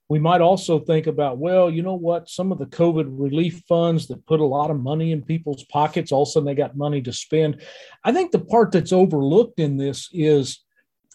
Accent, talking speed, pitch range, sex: American, 225 wpm, 145-195 Hz, male